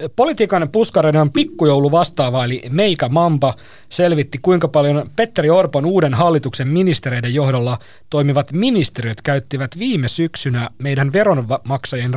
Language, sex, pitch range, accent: Finnish, male, 130-175 Hz, native